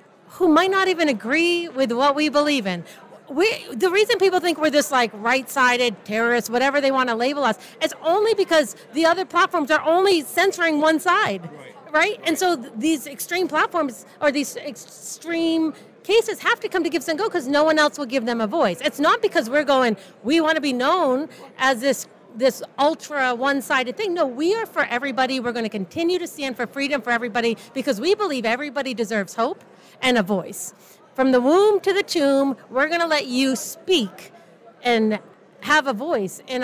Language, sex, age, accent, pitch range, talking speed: English, female, 40-59, American, 240-325 Hz, 195 wpm